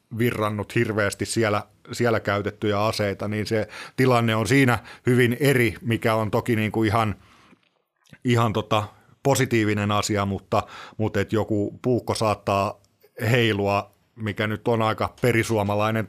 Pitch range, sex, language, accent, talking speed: 100-115 Hz, male, Finnish, native, 130 wpm